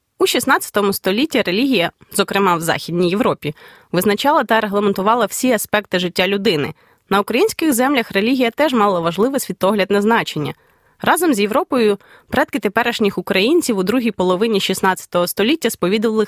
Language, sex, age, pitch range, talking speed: Ukrainian, female, 20-39, 185-240 Hz, 135 wpm